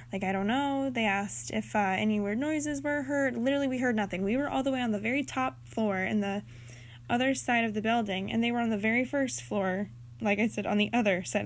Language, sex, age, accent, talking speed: English, female, 10-29, American, 255 wpm